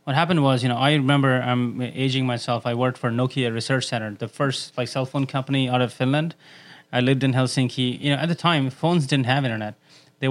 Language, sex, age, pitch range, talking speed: English, male, 20-39, 125-155 Hz, 235 wpm